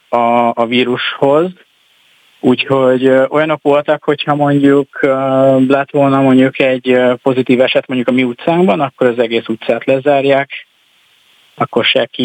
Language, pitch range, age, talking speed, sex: Hungarian, 120-140 Hz, 30-49, 120 wpm, male